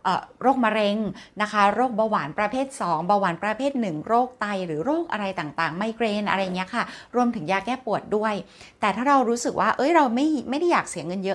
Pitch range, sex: 185-240 Hz, female